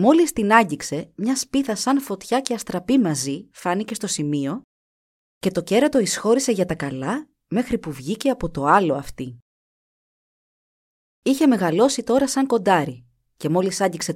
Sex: female